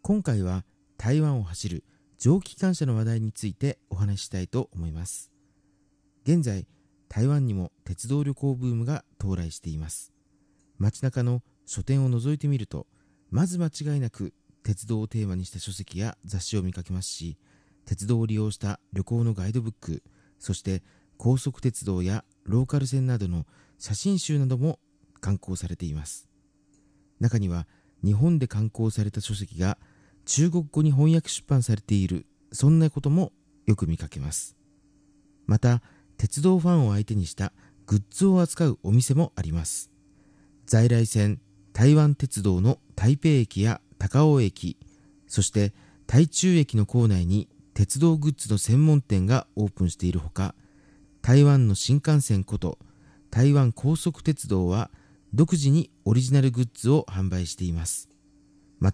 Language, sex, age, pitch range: Japanese, male, 40-59, 95-140 Hz